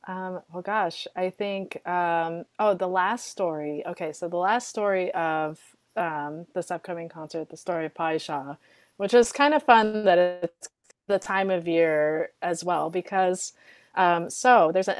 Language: English